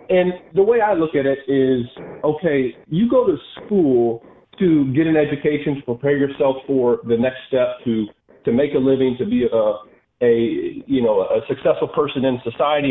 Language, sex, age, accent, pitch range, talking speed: English, male, 40-59, American, 125-155 Hz, 185 wpm